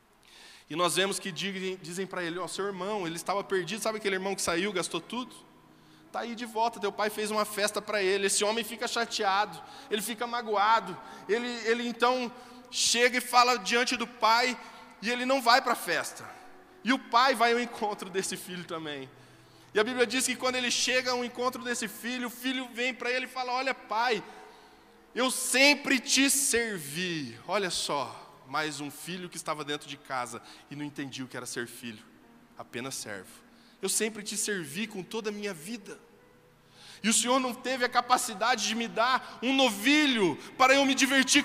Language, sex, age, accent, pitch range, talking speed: Portuguese, male, 20-39, Brazilian, 175-250 Hz, 195 wpm